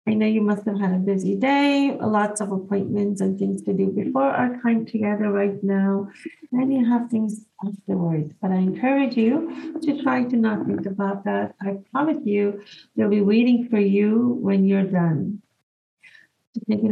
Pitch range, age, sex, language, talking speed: 200-255 Hz, 40-59, female, English, 175 wpm